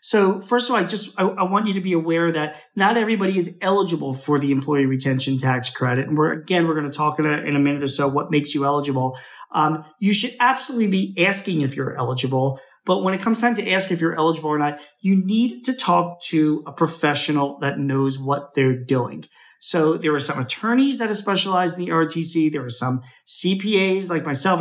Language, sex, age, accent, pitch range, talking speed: English, male, 40-59, American, 145-185 Hz, 225 wpm